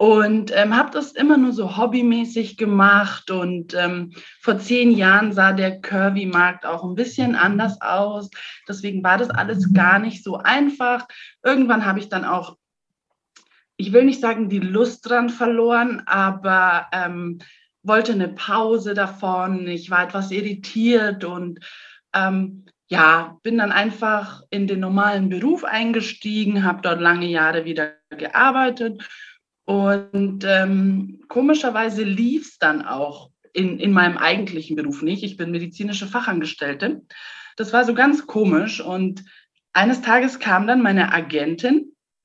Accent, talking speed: German, 140 wpm